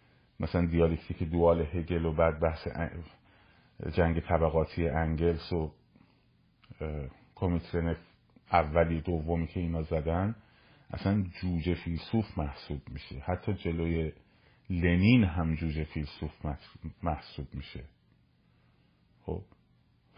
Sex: male